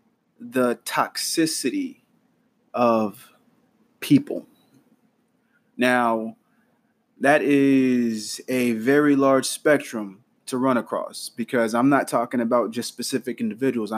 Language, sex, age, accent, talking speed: English, male, 30-49, American, 95 wpm